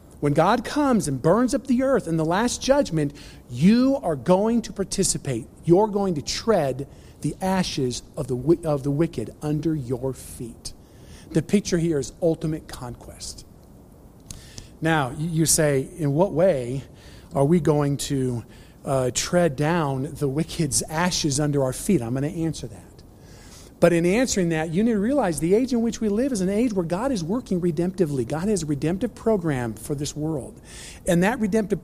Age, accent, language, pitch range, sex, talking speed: 50-69, American, English, 130-175 Hz, male, 175 wpm